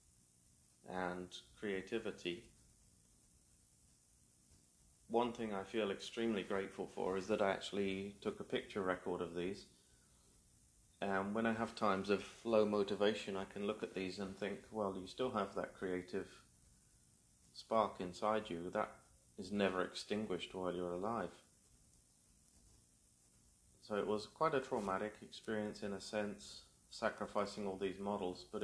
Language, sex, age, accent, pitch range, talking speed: English, male, 30-49, British, 90-105 Hz, 135 wpm